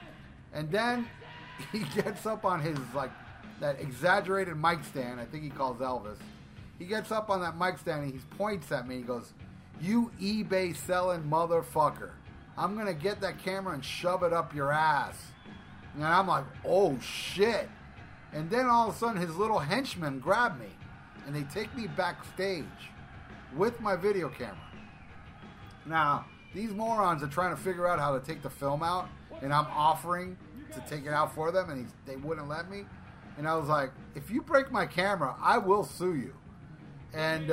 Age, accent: 30-49, American